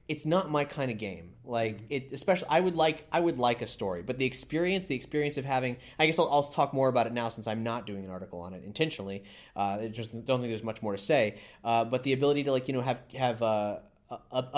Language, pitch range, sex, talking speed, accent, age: English, 110-135 Hz, male, 265 wpm, American, 20-39